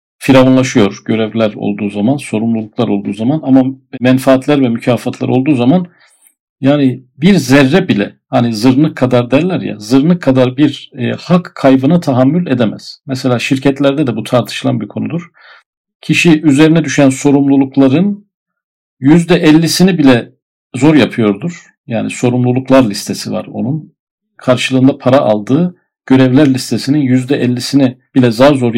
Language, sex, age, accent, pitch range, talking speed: Turkish, male, 50-69, native, 125-160 Hz, 125 wpm